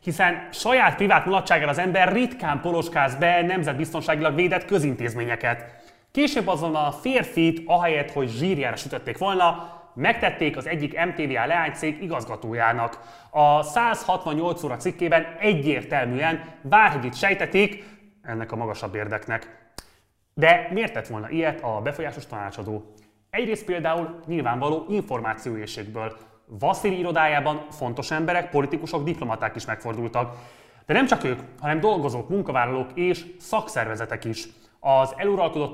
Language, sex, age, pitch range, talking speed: Hungarian, male, 30-49, 125-180 Hz, 120 wpm